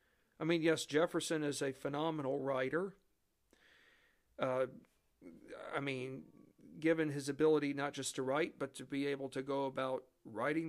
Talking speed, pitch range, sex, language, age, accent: 145 wpm, 145-180 Hz, male, English, 50-69, American